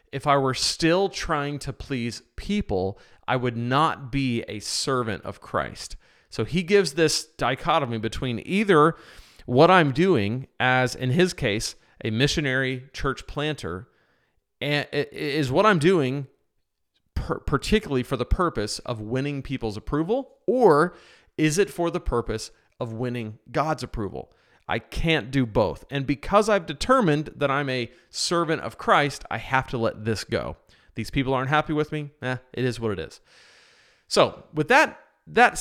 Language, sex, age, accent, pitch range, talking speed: English, male, 40-59, American, 115-155 Hz, 155 wpm